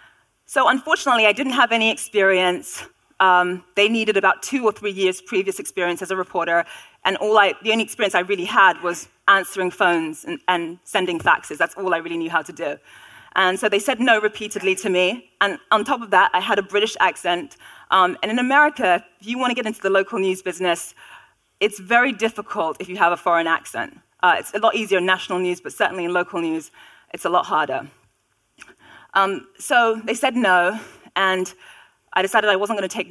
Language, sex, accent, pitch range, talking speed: English, female, British, 180-230 Hz, 205 wpm